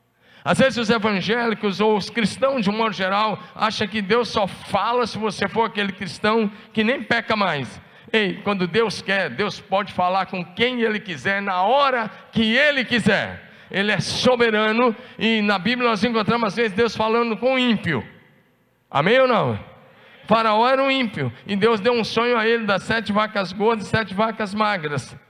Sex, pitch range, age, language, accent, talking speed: male, 205-235 Hz, 50-69, Portuguese, Brazilian, 185 wpm